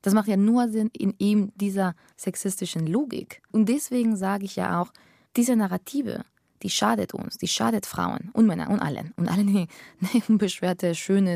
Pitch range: 170-220 Hz